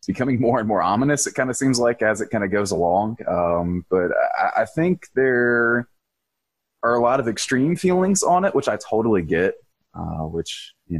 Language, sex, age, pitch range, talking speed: English, male, 20-39, 85-120 Hz, 200 wpm